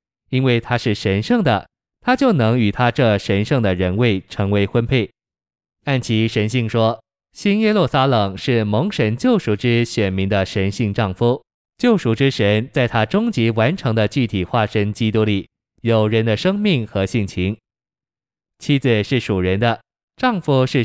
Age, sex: 20-39, male